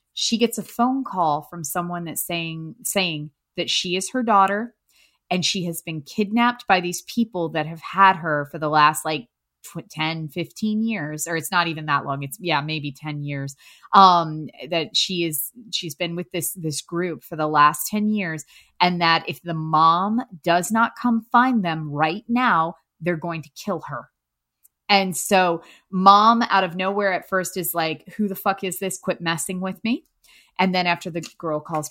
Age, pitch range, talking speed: 30-49, 155-190 Hz, 195 wpm